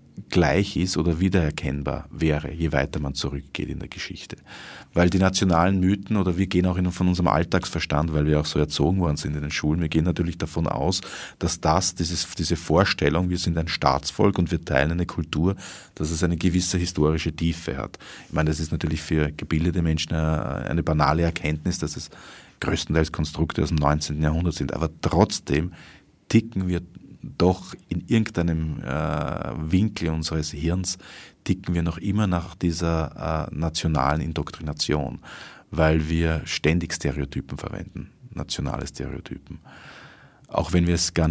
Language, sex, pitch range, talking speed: German, male, 80-90 Hz, 165 wpm